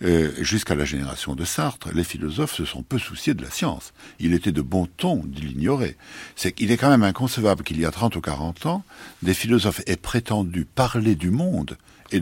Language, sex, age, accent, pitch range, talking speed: French, male, 60-79, French, 85-115 Hz, 205 wpm